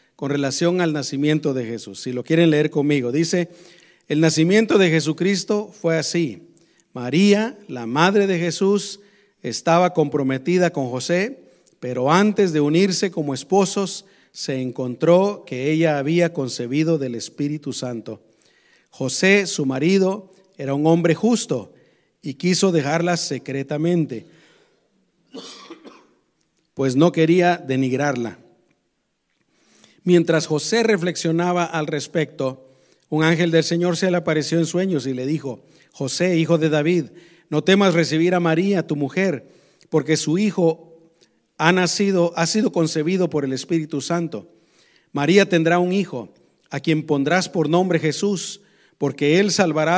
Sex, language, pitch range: male, Spanish, 145-180 Hz